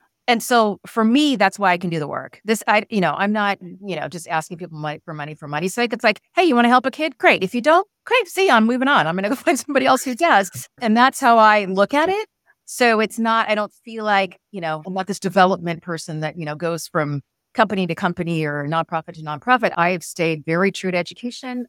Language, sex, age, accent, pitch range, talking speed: English, female, 40-59, American, 165-240 Hz, 265 wpm